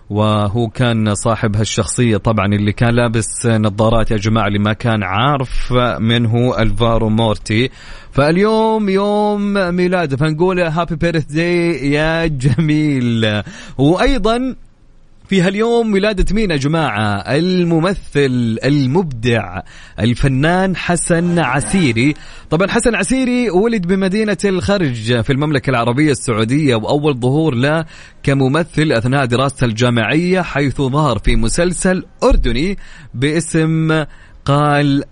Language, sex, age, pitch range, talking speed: Arabic, male, 30-49, 115-160 Hz, 105 wpm